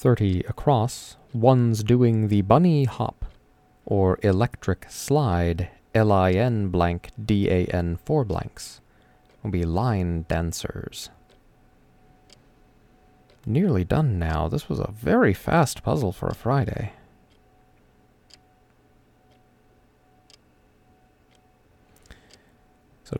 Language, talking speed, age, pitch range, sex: English, 85 wpm, 30-49, 85-110 Hz, male